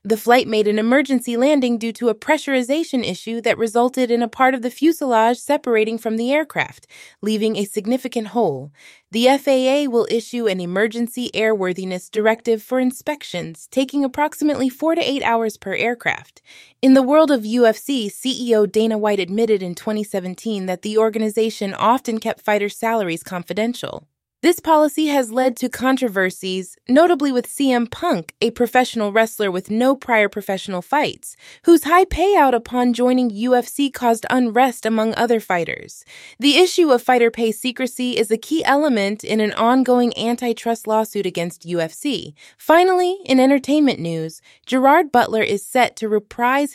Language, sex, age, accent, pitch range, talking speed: English, female, 20-39, American, 210-260 Hz, 155 wpm